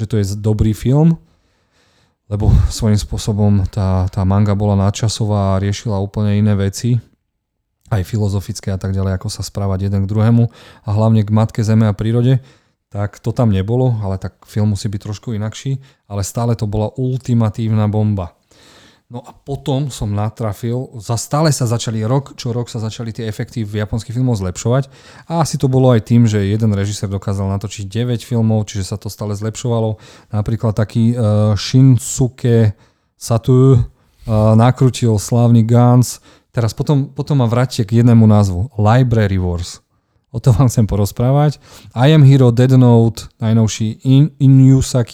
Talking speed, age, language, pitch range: 160 wpm, 30-49, Slovak, 105-120 Hz